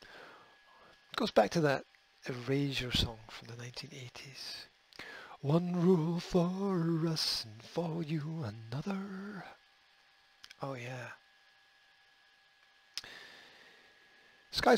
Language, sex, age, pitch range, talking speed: English, male, 50-69, 110-180 Hz, 85 wpm